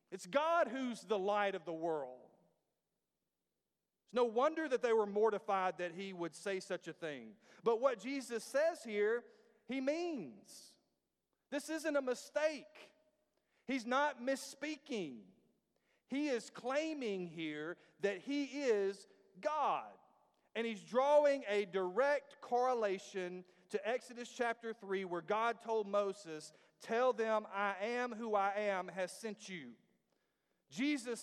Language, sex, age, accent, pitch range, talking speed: English, male, 40-59, American, 185-255 Hz, 135 wpm